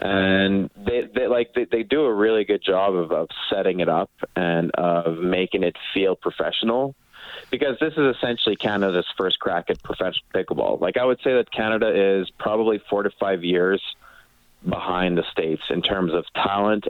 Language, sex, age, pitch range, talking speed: English, male, 30-49, 90-120 Hz, 180 wpm